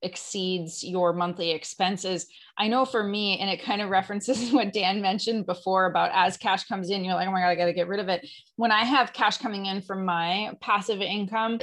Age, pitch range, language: 30-49, 180-215 Hz, English